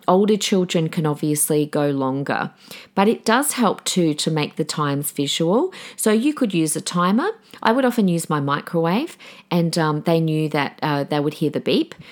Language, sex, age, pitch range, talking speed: English, female, 40-59, 160-225 Hz, 195 wpm